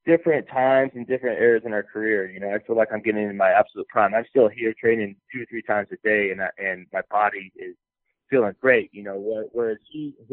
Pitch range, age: 105-125 Hz, 20-39